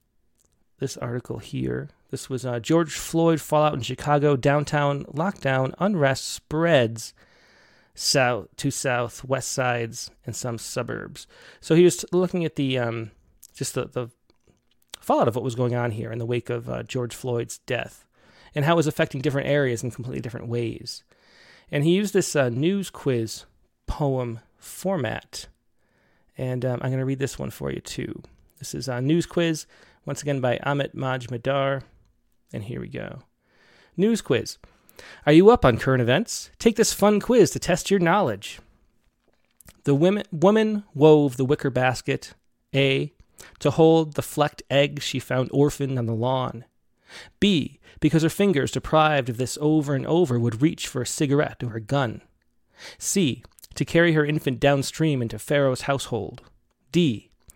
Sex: male